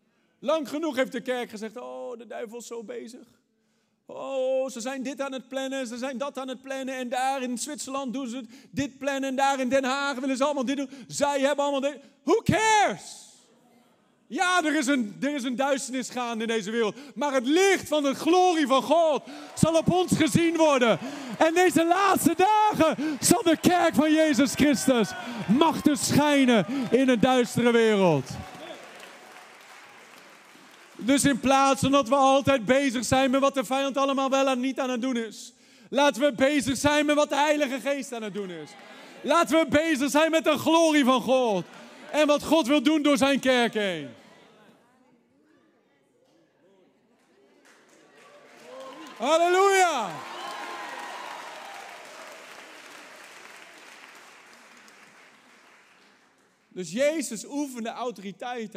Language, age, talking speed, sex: Dutch, 40-59, 150 wpm, male